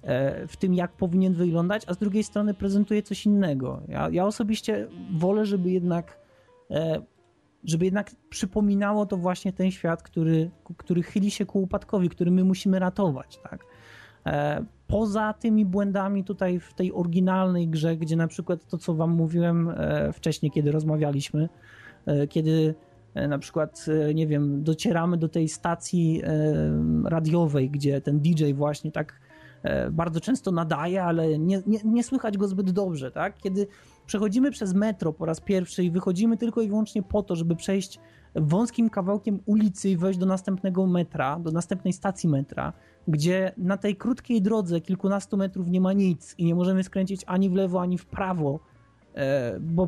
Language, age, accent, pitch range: Polish, 20-39, native, 165-200 Hz